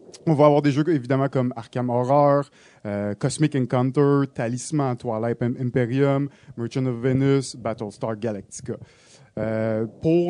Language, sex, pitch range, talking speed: French, male, 125-160 Hz, 130 wpm